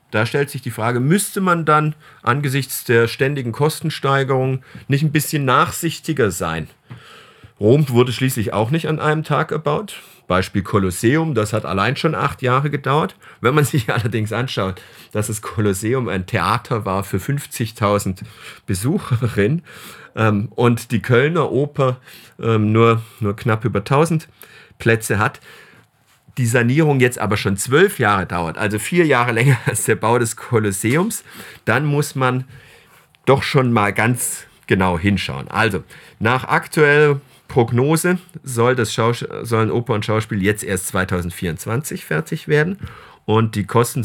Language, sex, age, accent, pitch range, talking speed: German, male, 50-69, German, 105-140 Hz, 145 wpm